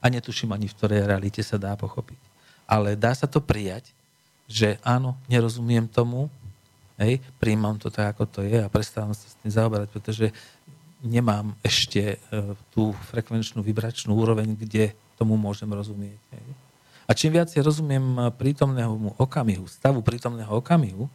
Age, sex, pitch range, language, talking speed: 40-59, male, 110-140 Hz, English, 150 wpm